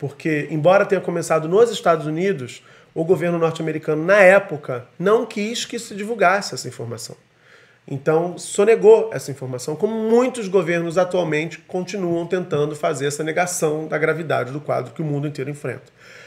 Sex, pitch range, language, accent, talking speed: male, 155-195 Hz, Portuguese, Brazilian, 150 wpm